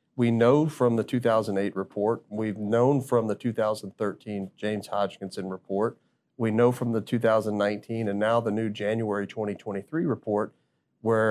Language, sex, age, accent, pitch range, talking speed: English, male, 40-59, American, 100-120 Hz, 145 wpm